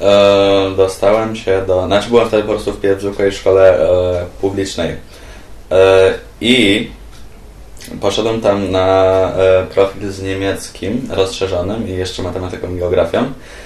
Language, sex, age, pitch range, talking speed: Polish, male, 20-39, 95-100 Hz, 125 wpm